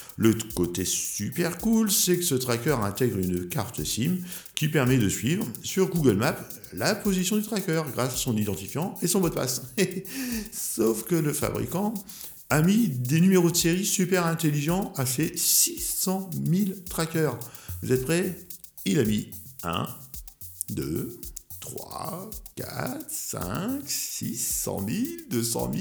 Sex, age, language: male, 50-69, French